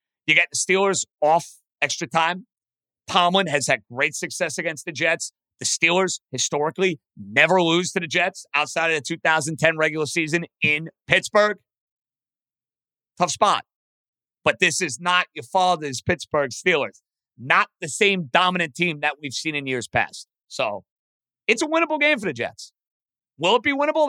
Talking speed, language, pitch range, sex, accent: 160 wpm, English, 145-195 Hz, male, American